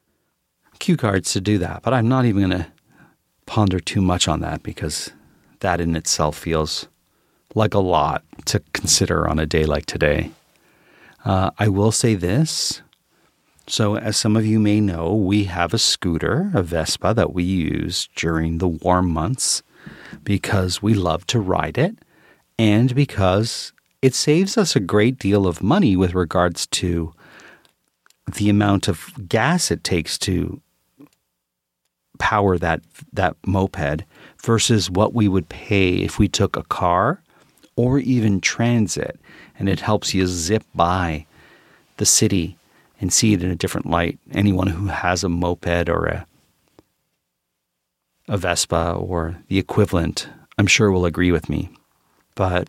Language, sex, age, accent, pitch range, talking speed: English, male, 40-59, American, 85-110 Hz, 150 wpm